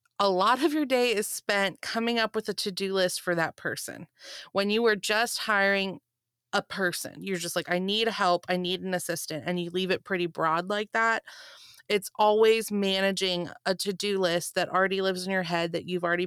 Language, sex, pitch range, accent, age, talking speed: English, female, 175-205 Hz, American, 20-39, 205 wpm